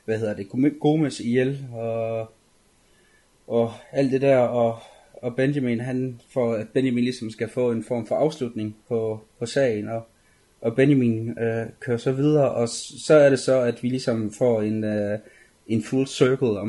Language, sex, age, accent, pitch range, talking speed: Danish, male, 20-39, native, 110-130 Hz, 180 wpm